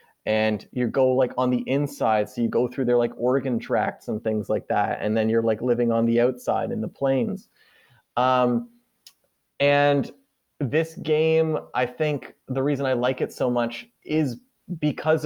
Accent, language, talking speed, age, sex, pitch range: American, English, 175 wpm, 30-49, male, 110-130 Hz